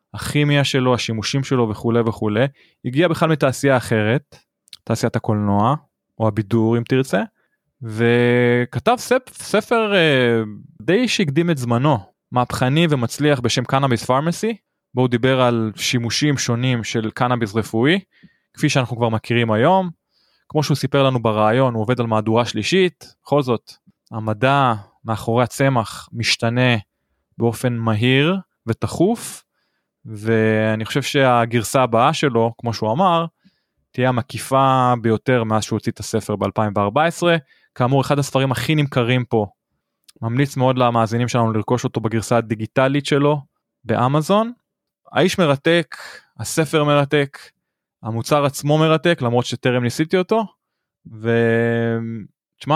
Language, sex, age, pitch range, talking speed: Hebrew, male, 20-39, 115-145 Hz, 120 wpm